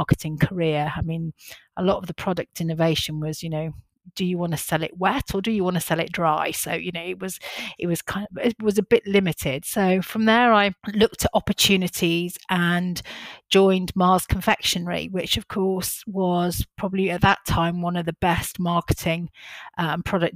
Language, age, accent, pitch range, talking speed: English, 40-59, British, 165-195 Hz, 205 wpm